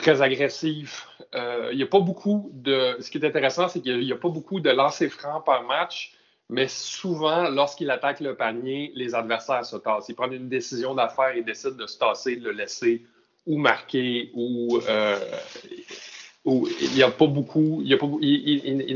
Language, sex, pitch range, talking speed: French, male, 125-175 Hz, 185 wpm